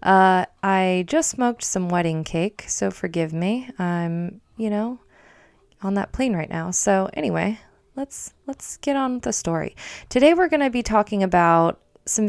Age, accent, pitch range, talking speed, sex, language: 20-39, American, 170-225 Hz, 170 wpm, female, English